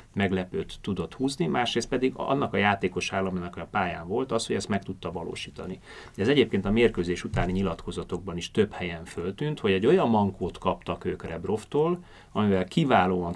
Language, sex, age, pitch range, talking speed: Hungarian, male, 30-49, 90-105 Hz, 165 wpm